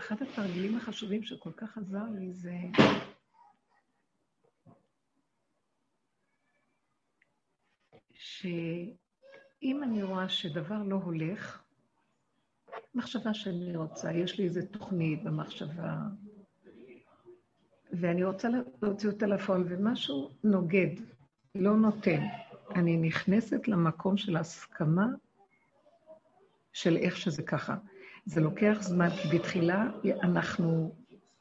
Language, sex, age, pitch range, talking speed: Hebrew, female, 60-79, 175-225 Hz, 85 wpm